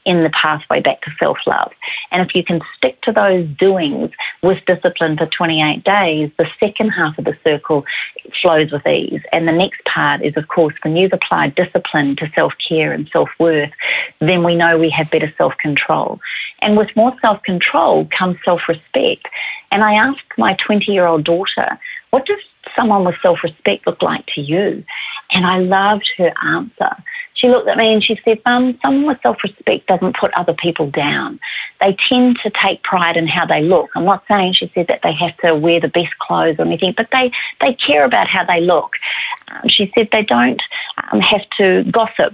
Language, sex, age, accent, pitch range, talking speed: English, female, 40-59, Australian, 165-210 Hz, 190 wpm